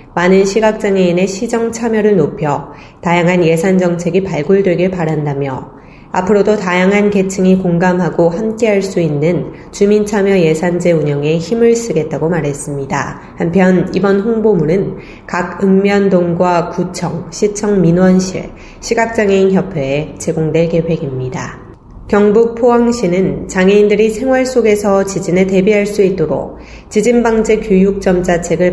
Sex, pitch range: female, 170-205 Hz